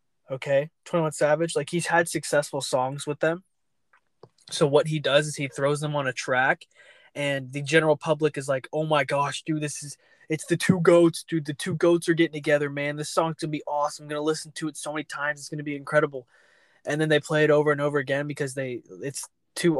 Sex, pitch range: male, 145-165 Hz